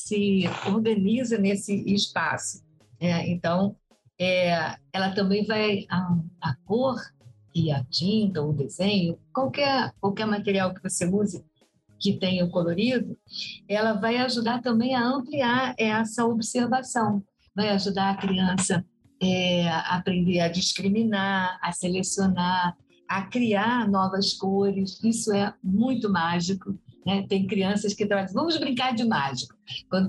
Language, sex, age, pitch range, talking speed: Portuguese, female, 50-69, 175-215 Hz, 130 wpm